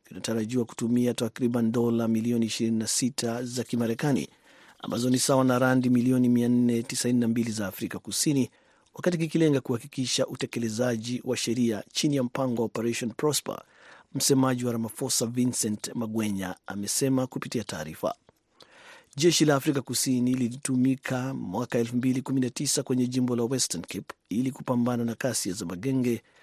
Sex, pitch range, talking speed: male, 115-135 Hz, 125 wpm